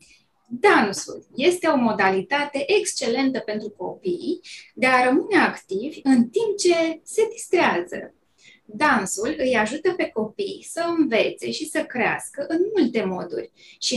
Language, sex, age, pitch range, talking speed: Romanian, female, 20-39, 220-320 Hz, 130 wpm